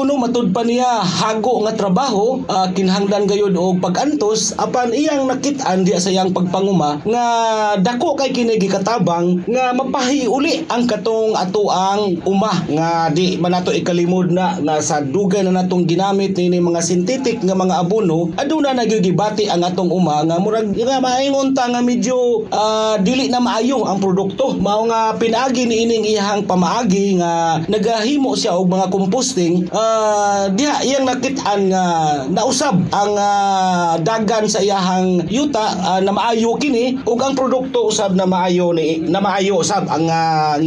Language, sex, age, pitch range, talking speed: Filipino, male, 40-59, 180-230 Hz, 150 wpm